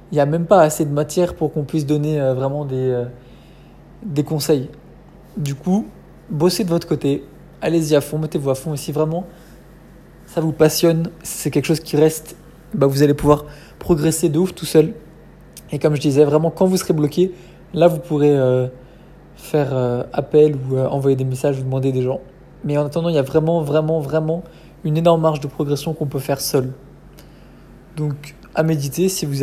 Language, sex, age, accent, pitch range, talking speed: French, male, 20-39, French, 135-160 Hz, 200 wpm